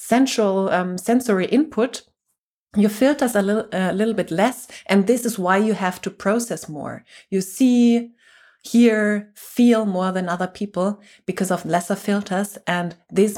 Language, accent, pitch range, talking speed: English, German, 180-230 Hz, 160 wpm